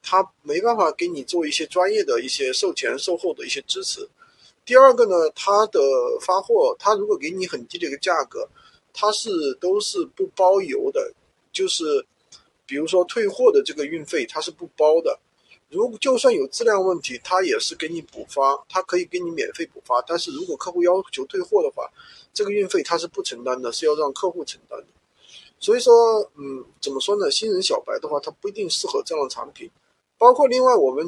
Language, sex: Chinese, male